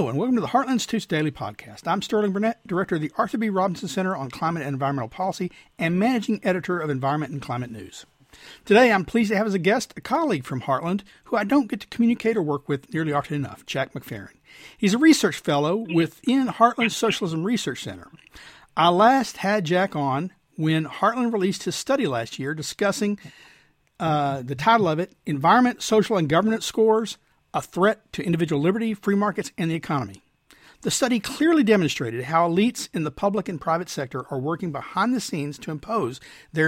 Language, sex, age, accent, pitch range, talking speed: English, male, 50-69, American, 150-225 Hz, 195 wpm